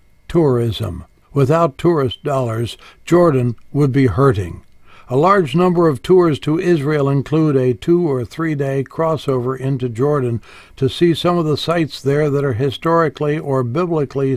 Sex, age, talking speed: male, 60-79, 145 wpm